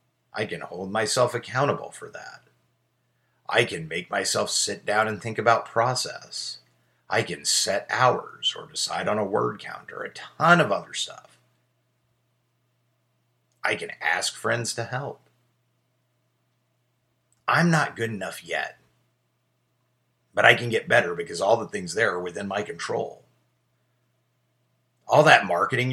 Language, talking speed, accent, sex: English, 140 wpm, American, male